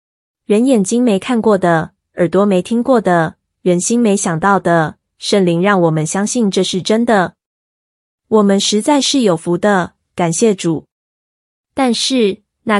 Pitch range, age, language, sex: 175-220 Hz, 20-39, Chinese, female